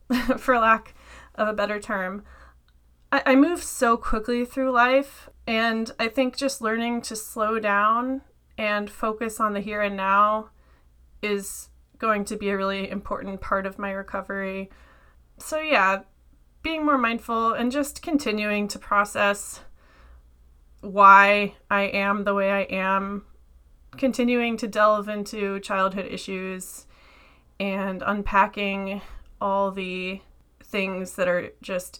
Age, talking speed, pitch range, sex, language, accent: 30-49, 130 wpm, 190-230 Hz, female, English, American